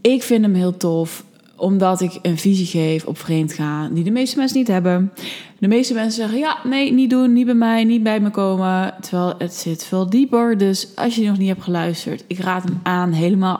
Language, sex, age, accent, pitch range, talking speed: Dutch, female, 20-39, Dutch, 175-220 Hz, 220 wpm